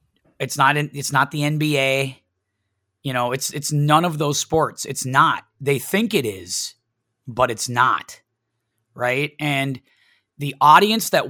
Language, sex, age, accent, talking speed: English, male, 30-49, American, 150 wpm